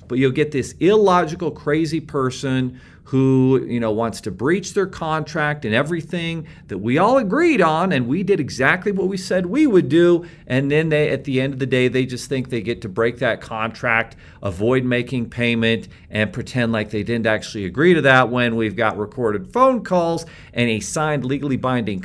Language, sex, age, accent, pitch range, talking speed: English, male, 40-59, American, 115-155 Hz, 200 wpm